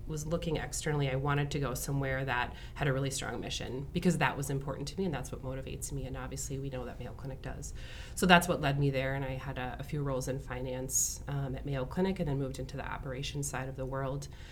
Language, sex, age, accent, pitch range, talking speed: English, female, 30-49, American, 130-150 Hz, 255 wpm